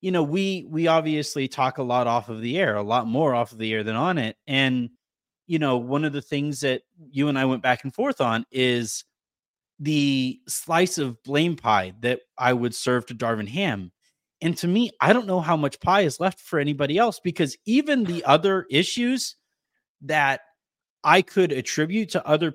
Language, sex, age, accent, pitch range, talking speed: English, male, 30-49, American, 135-210 Hz, 200 wpm